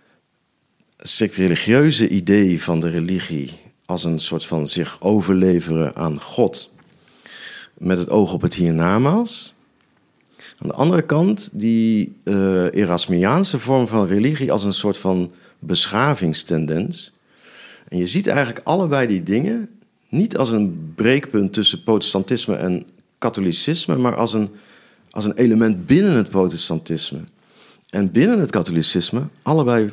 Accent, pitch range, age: Dutch, 90-120 Hz, 50-69